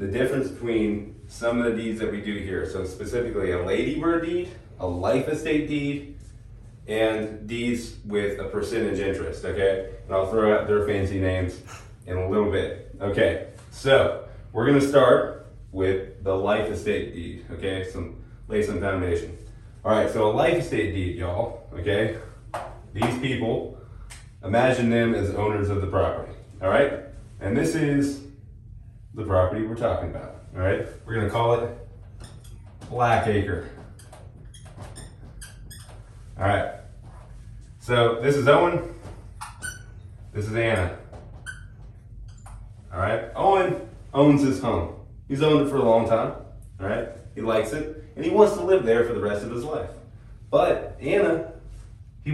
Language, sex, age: English, male, 30-49